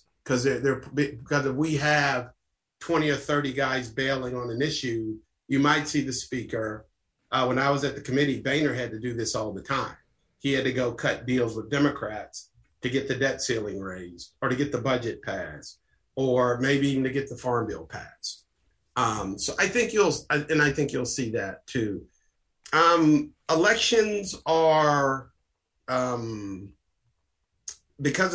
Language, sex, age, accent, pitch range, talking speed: English, male, 50-69, American, 125-150 Hz, 170 wpm